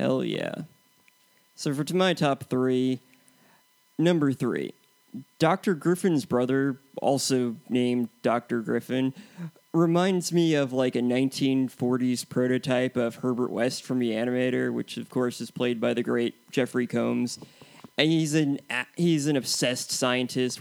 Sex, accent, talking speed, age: male, American, 135 wpm, 20-39